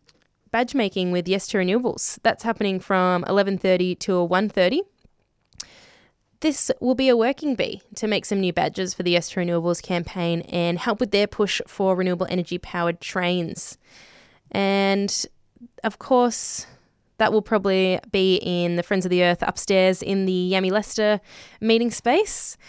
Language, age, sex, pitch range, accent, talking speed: English, 10-29, female, 180-220 Hz, Australian, 160 wpm